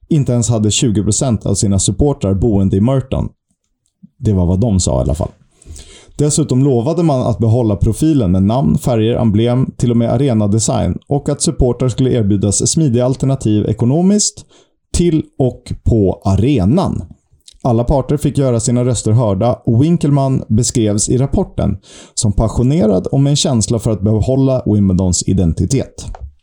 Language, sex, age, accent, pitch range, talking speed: Swedish, male, 30-49, native, 105-135 Hz, 150 wpm